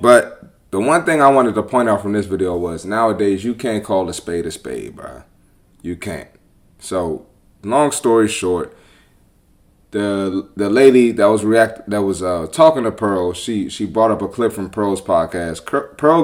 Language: English